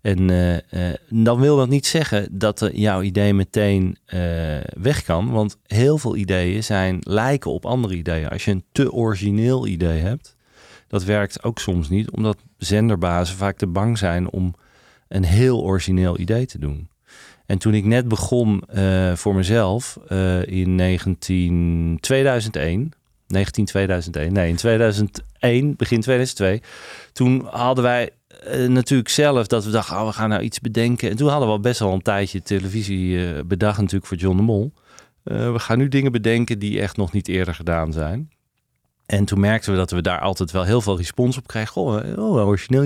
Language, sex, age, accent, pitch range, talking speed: Dutch, male, 40-59, Dutch, 95-120 Hz, 180 wpm